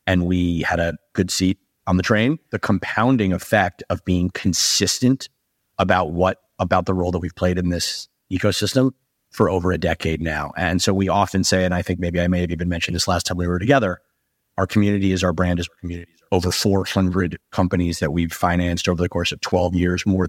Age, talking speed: 30-49, 215 wpm